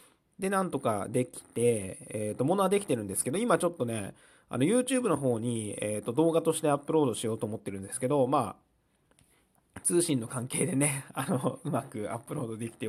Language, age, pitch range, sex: Japanese, 20-39, 105-150 Hz, male